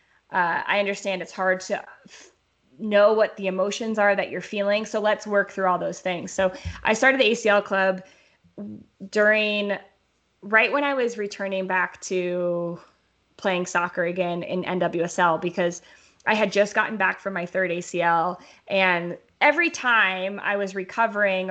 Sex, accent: female, American